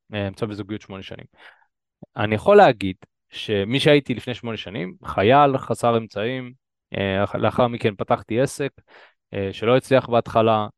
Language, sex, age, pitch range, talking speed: Hebrew, male, 20-39, 105-140 Hz, 120 wpm